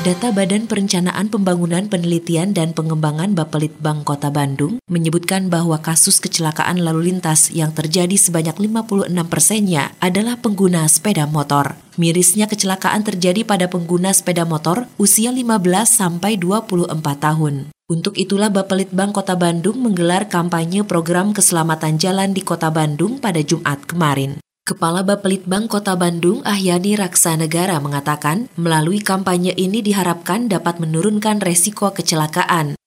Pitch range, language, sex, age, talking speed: 170-210 Hz, Indonesian, female, 20-39, 125 wpm